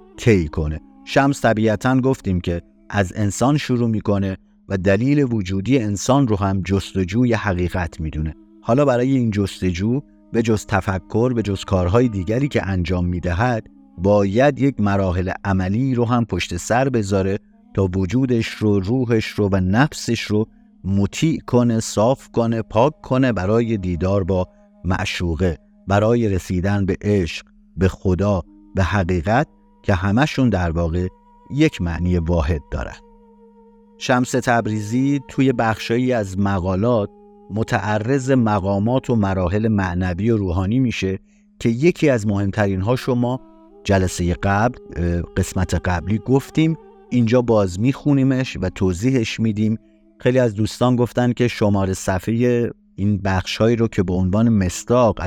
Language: Persian